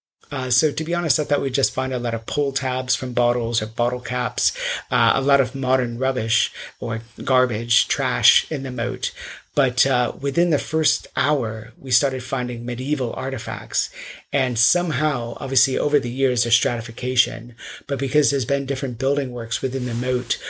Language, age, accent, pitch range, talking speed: English, 30-49, American, 120-135 Hz, 180 wpm